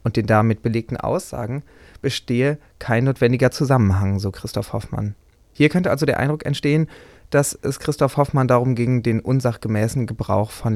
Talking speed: 155 wpm